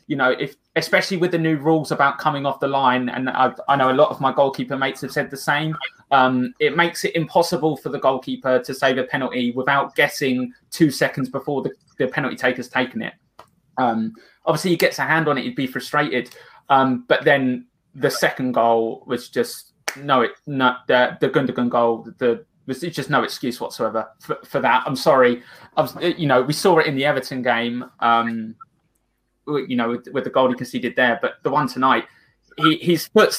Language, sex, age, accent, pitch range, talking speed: English, male, 20-39, British, 130-165 Hz, 205 wpm